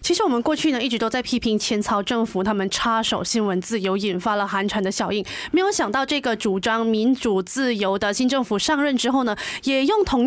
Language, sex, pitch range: Chinese, female, 215-275 Hz